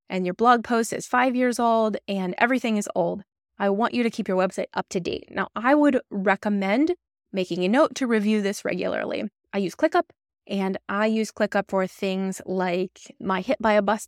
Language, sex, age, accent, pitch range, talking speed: English, female, 20-39, American, 190-250 Hz, 190 wpm